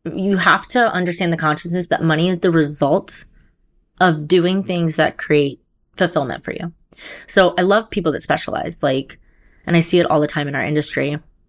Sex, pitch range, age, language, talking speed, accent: female, 150-180 Hz, 30-49, English, 190 wpm, American